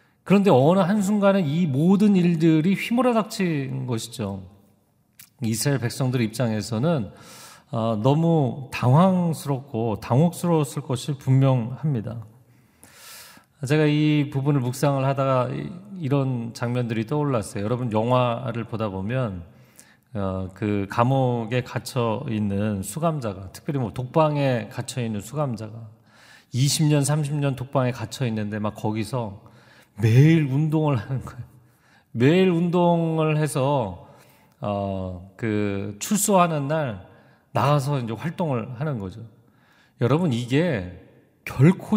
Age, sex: 40-59, male